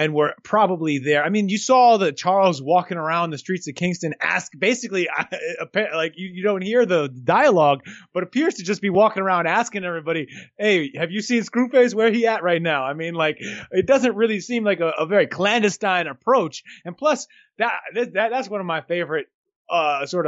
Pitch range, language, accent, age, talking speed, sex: 175-230 Hz, English, American, 30-49, 200 wpm, male